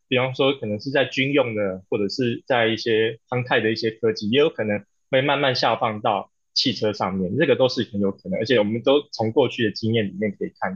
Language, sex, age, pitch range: Chinese, male, 20-39, 105-130 Hz